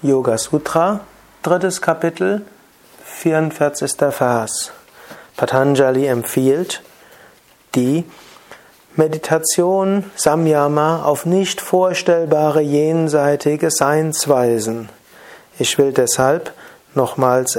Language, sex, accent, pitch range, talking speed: German, male, German, 135-170 Hz, 70 wpm